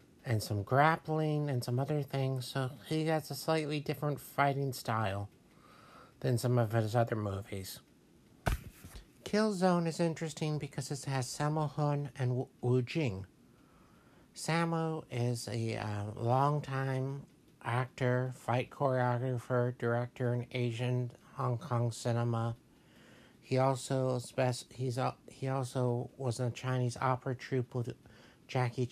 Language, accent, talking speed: English, American, 130 wpm